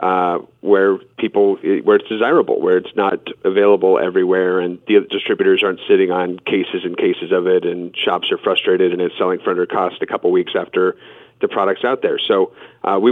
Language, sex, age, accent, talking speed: English, male, 40-59, American, 195 wpm